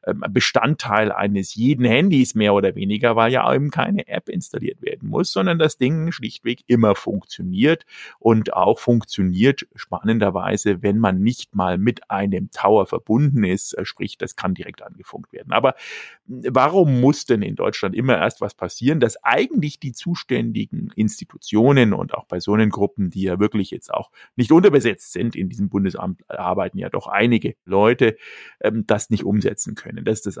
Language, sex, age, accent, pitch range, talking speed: German, male, 50-69, German, 105-140 Hz, 160 wpm